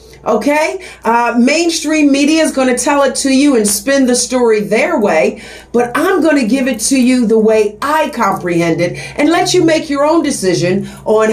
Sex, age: female, 50-69